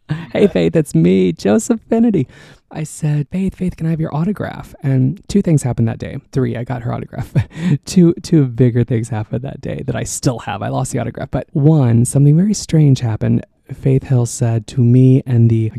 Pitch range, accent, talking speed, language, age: 120-150 Hz, American, 210 wpm, English, 20-39